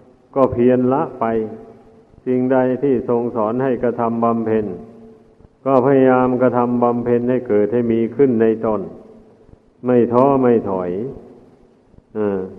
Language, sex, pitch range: Thai, male, 115-125 Hz